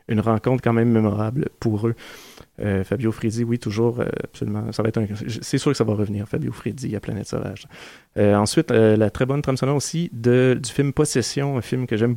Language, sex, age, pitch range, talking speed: French, male, 30-49, 110-125 Hz, 220 wpm